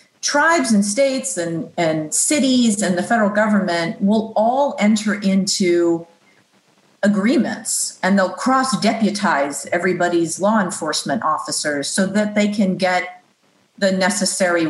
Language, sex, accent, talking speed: English, female, American, 125 wpm